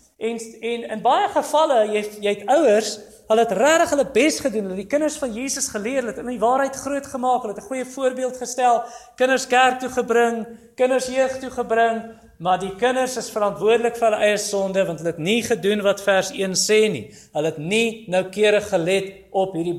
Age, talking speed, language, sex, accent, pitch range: 40-59, 195 wpm, English, male, Dutch, 190-245 Hz